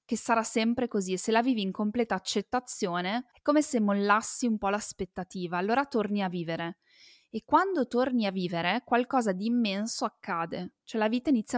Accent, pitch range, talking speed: native, 190-240 Hz, 180 wpm